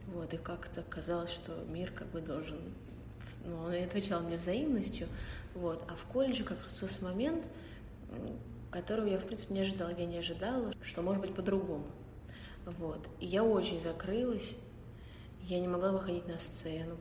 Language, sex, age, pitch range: Russian, female, 20-39, 155-180 Hz